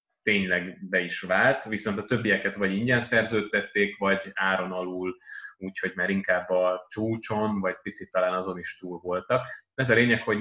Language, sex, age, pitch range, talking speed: Hungarian, male, 20-39, 95-110 Hz, 165 wpm